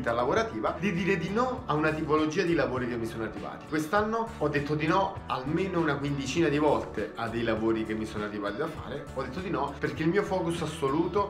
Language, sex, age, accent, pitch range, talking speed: Italian, male, 30-49, native, 140-180 Hz, 225 wpm